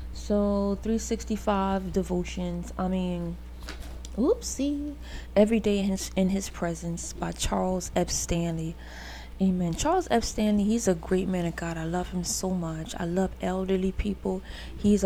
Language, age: English, 20-39